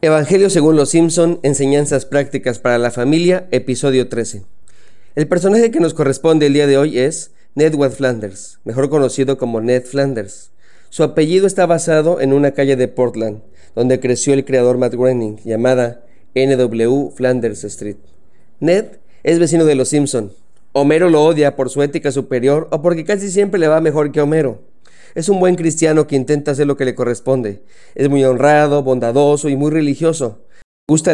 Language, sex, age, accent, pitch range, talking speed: Spanish, male, 40-59, Mexican, 125-150 Hz, 170 wpm